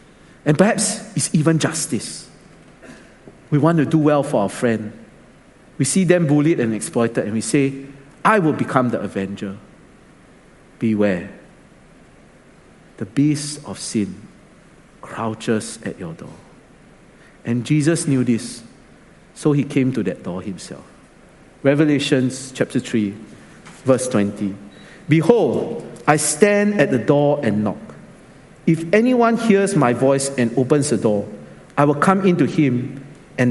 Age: 50-69